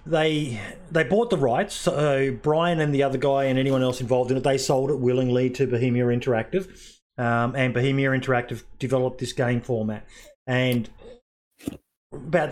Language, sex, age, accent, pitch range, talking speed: English, male, 30-49, Australian, 120-140 Hz, 165 wpm